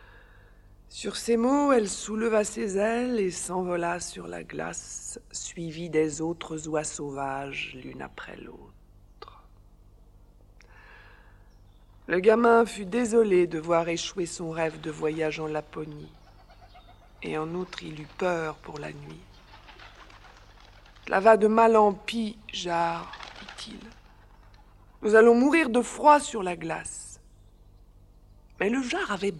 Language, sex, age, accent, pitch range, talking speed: French, female, 50-69, French, 145-230 Hz, 125 wpm